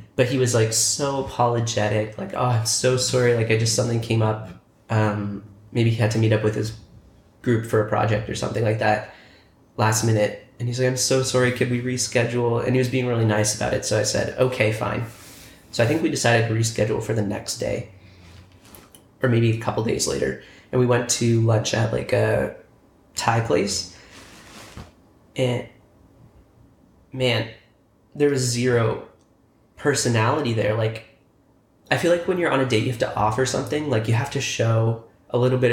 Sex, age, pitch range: male, 20-39, 110-125 Hz